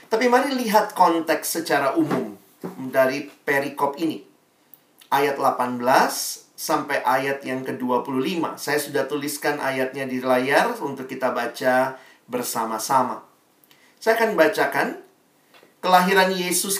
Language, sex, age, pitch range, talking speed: Indonesian, male, 40-59, 140-185 Hz, 105 wpm